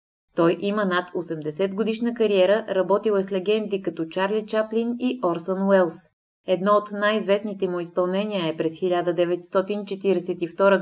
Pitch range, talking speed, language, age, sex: 175-205 Hz, 135 wpm, Bulgarian, 20-39, female